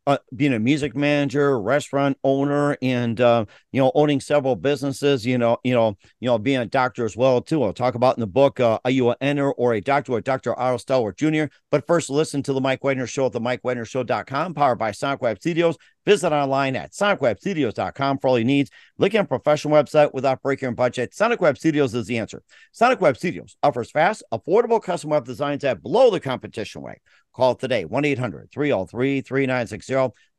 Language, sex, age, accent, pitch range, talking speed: English, male, 50-69, American, 125-150 Hz, 195 wpm